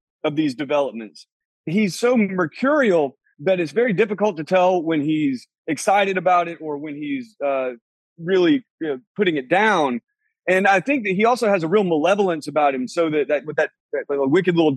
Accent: American